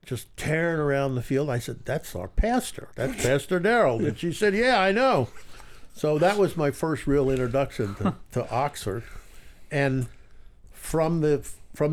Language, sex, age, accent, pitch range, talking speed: English, male, 60-79, American, 95-125 Hz, 155 wpm